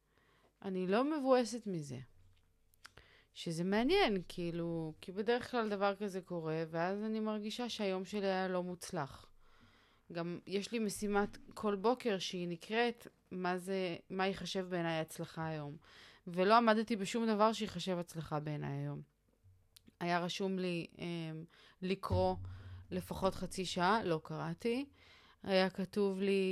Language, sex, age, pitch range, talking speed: Hebrew, female, 30-49, 170-215 Hz, 130 wpm